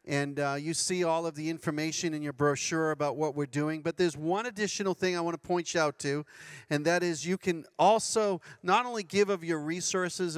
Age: 40-59